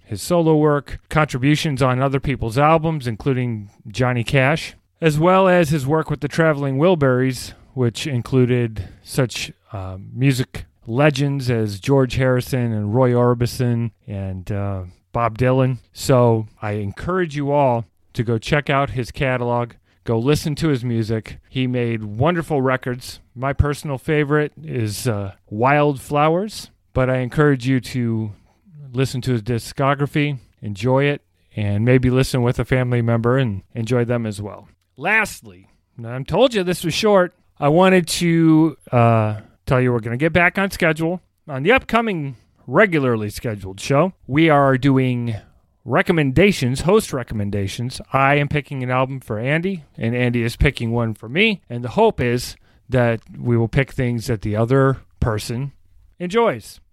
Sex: male